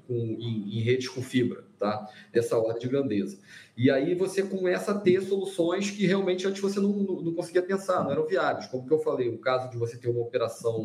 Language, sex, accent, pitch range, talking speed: Portuguese, male, Brazilian, 120-160 Hz, 225 wpm